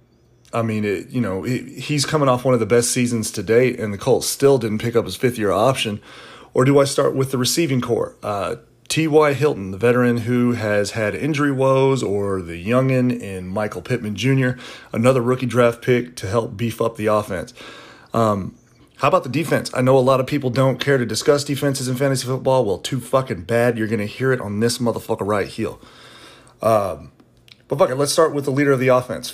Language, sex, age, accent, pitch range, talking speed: English, male, 30-49, American, 115-135 Hz, 215 wpm